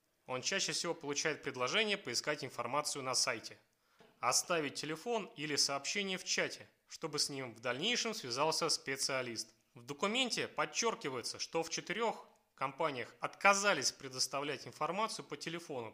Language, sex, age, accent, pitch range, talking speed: Russian, male, 30-49, native, 140-185 Hz, 130 wpm